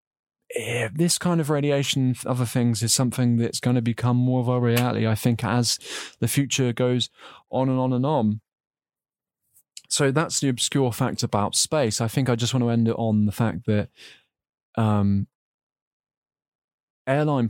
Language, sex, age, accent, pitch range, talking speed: English, male, 20-39, British, 110-130 Hz, 170 wpm